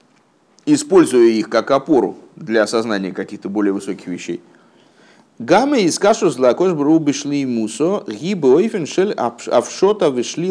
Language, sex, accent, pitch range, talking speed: Russian, male, native, 115-170 Hz, 125 wpm